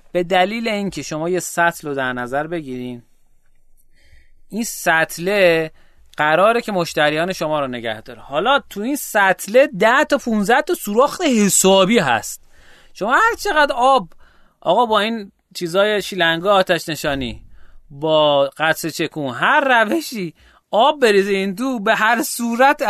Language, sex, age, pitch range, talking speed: Persian, male, 30-49, 145-230 Hz, 135 wpm